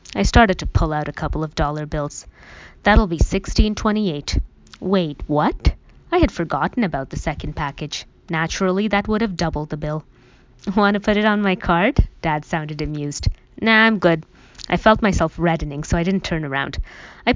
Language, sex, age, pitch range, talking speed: English, female, 20-39, 155-215 Hz, 185 wpm